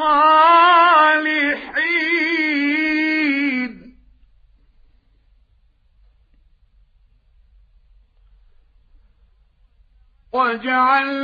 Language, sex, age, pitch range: Arabic, male, 50-69, 195-275 Hz